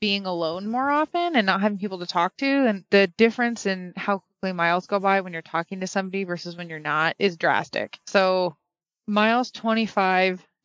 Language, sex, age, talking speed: English, female, 20-39, 190 wpm